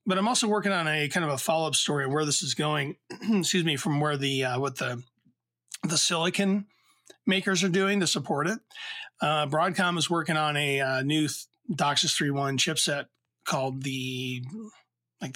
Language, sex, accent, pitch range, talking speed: English, male, American, 140-180 Hz, 180 wpm